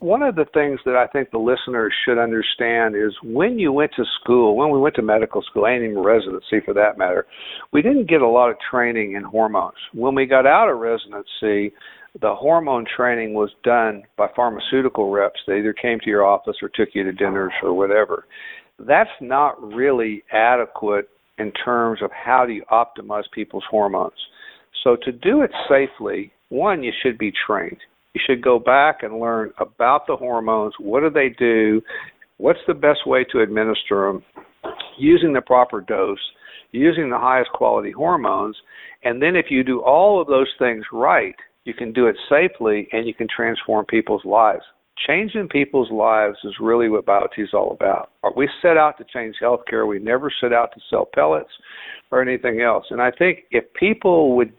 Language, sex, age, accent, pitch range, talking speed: English, male, 50-69, American, 110-135 Hz, 185 wpm